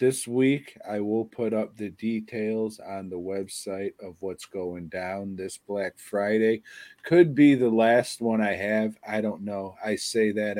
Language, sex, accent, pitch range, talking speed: English, male, American, 100-120 Hz, 175 wpm